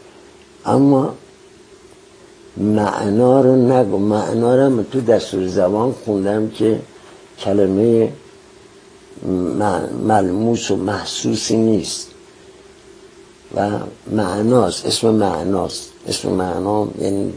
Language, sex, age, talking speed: Persian, male, 60-79, 80 wpm